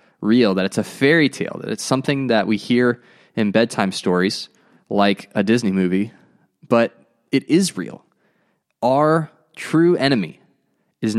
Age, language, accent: 20-39, English, American